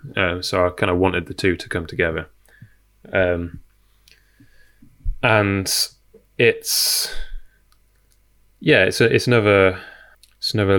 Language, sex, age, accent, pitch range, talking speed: English, male, 10-29, British, 90-100 Hz, 110 wpm